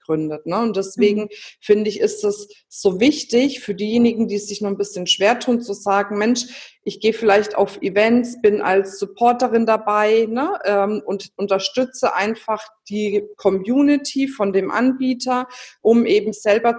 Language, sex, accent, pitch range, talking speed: German, female, German, 195-230 Hz, 145 wpm